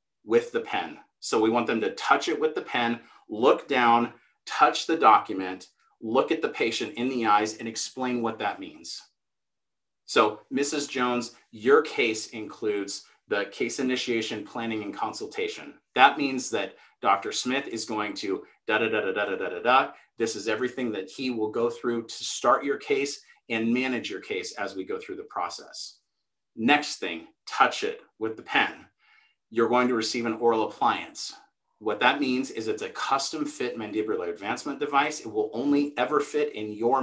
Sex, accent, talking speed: male, American, 180 wpm